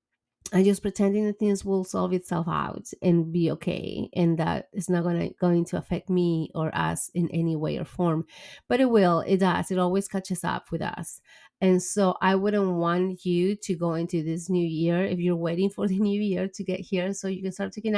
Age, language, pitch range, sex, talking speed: 30-49, English, 175-205 Hz, female, 220 wpm